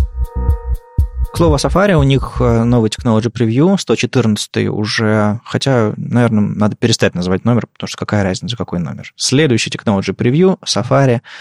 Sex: male